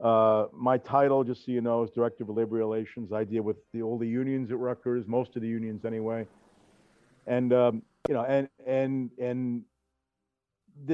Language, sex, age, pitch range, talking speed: English, male, 50-69, 110-130 Hz, 180 wpm